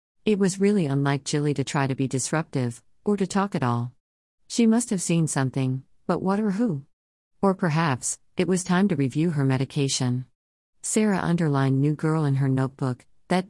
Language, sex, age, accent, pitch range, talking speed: English, female, 50-69, American, 130-170 Hz, 180 wpm